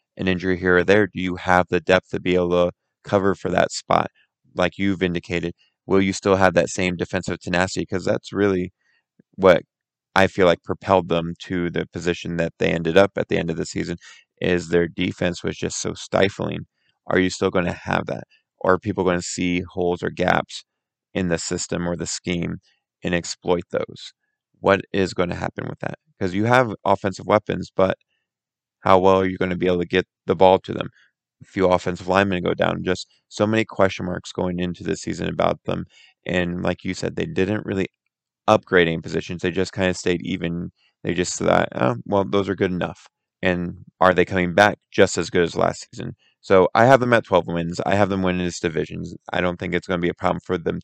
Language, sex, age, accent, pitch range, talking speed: English, male, 20-39, American, 90-95 Hz, 220 wpm